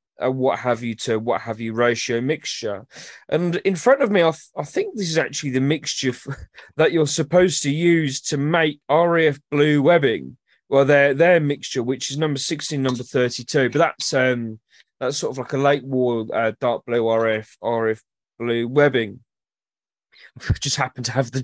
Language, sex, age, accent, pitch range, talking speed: English, male, 20-39, British, 120-160 Hz, 190 wpm